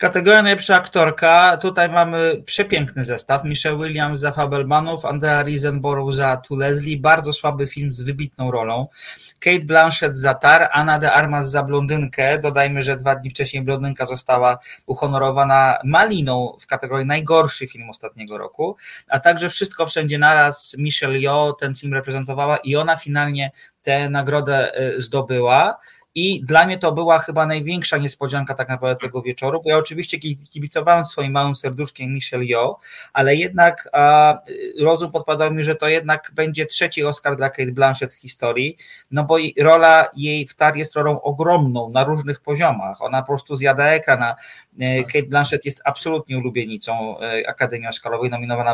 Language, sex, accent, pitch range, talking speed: Polish, male, native, 130-155 Hz, 155 wpm